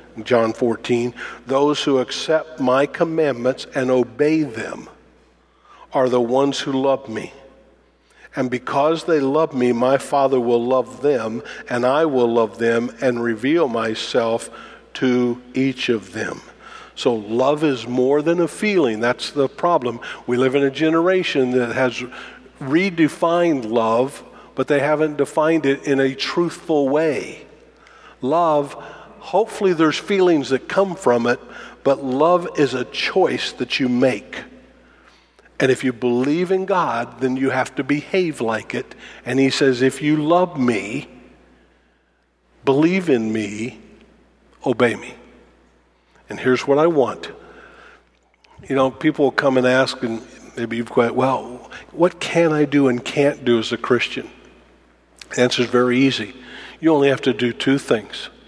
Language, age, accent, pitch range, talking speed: English, 50-69, American, 120-150 Hz, 150 wpm